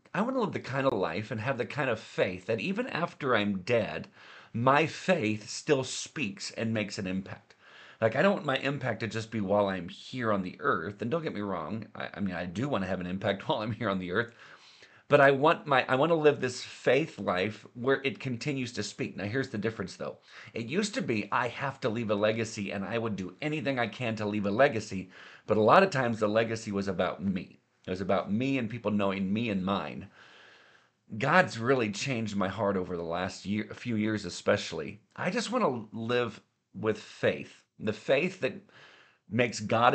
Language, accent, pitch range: English, American, 100-130 Hz